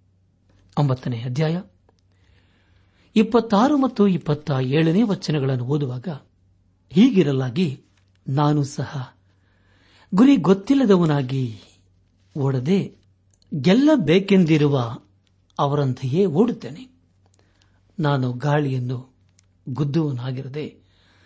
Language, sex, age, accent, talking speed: Kannada, male, 60-79, native, 50 wpm